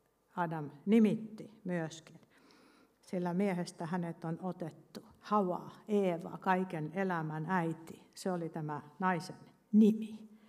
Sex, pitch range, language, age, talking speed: female, 170-220 Hz, Finnish, 60-79, 105 wpm